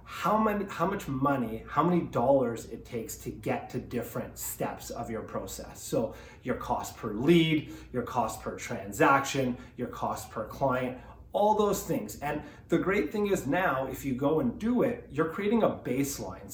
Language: English